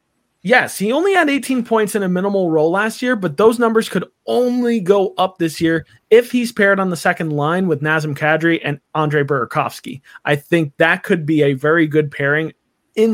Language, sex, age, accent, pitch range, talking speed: English, male, 20-39, American, 155-220 Hz, 200 wpm